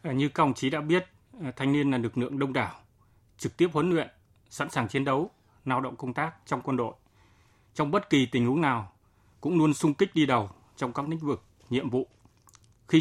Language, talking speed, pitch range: Vietnamese, 210 wpm, 110-150 Hz